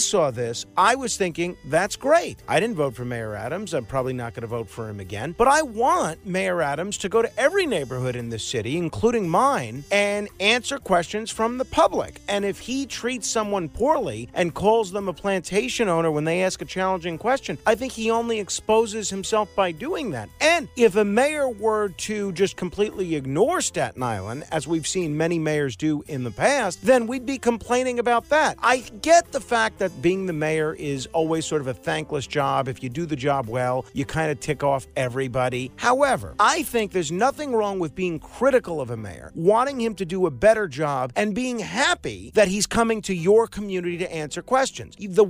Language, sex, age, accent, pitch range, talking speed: English, male, 50-69, American, 150-225 Hz, 205 wpm